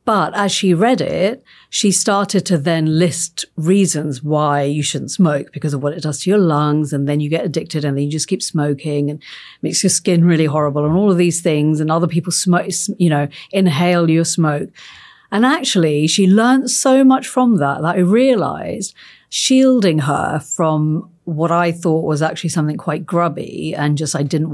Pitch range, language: 155-195 Hz, English